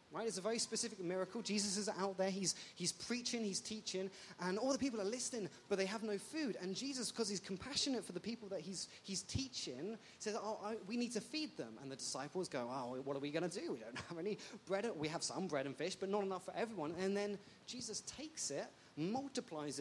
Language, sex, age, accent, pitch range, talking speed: English, male, 30-49, British, 185-225 Hz, 240 wpm